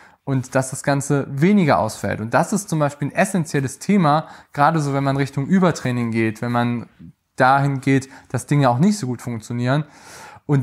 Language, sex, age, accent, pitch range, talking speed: German, male, 20-39, German, 125-165 Hz, 185 wpm